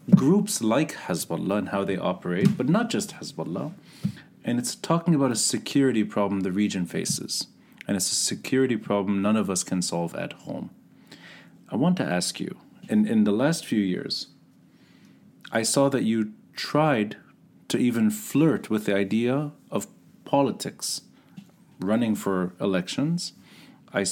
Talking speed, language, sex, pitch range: 150 wpm, English, male, 100-135 Hz